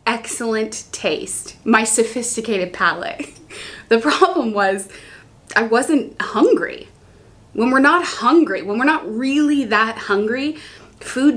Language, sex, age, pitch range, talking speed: English, female, 20-39, 215-300 Hz, 115 wpm